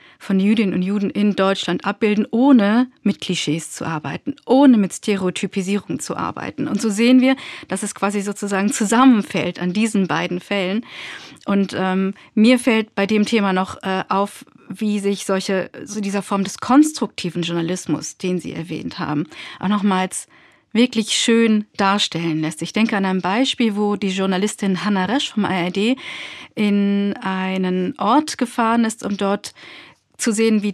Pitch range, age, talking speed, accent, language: 190-225 Hz, 40-59, 160 wpm, German, German